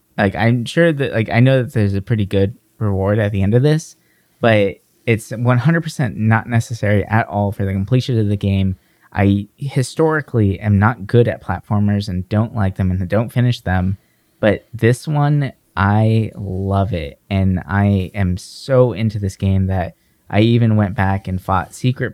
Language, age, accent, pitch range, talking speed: English, 20-39, American, 100-120 Hz, 180 wpm